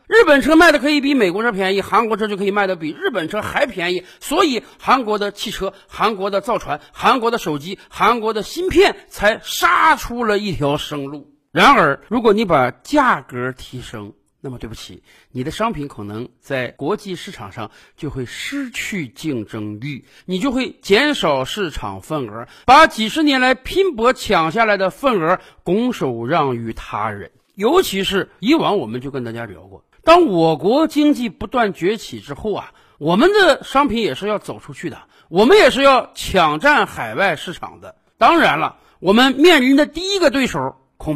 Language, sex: Chinese, male